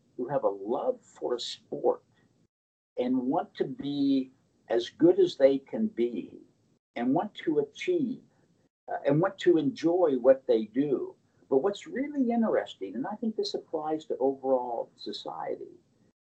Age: 60-79